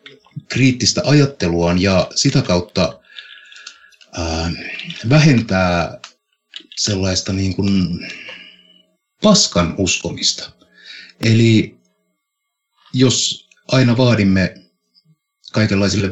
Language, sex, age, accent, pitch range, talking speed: Finnish, male, 60-79, native, 95-135 Hz, 65 wpm